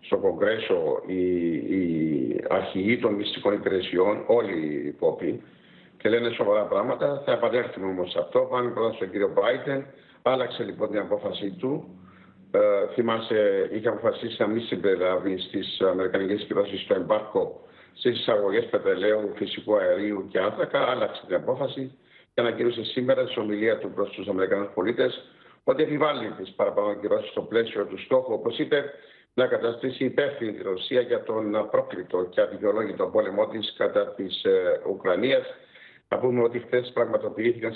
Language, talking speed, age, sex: Greek, 145 wpm, 60-79, male